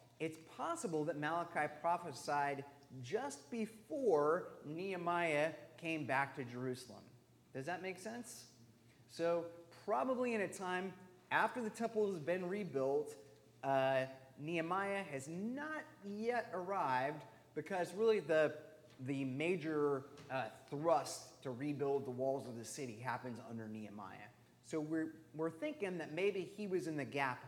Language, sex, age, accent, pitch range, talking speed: English, male, 30-49, American, 130-190 Hz, 135 wpm